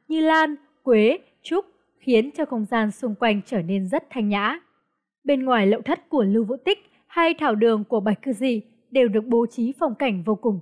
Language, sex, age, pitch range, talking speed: Vietnamese, female, 20-39, 215-290 Hz, 215 wpm